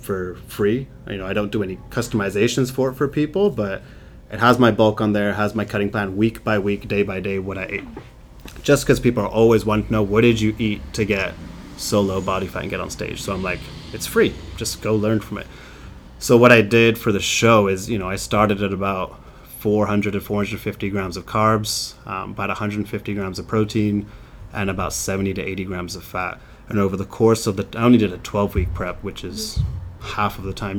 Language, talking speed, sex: English, 230 wpm, male